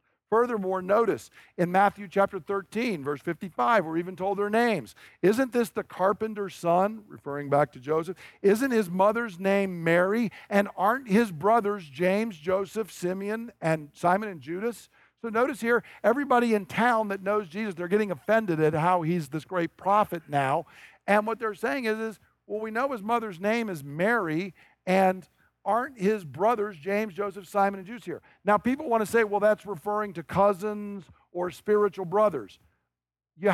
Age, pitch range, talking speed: 50-69, 165-215 Hz, 170 wpm